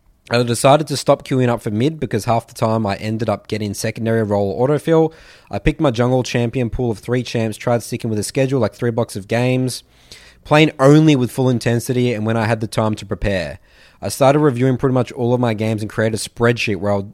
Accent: Australian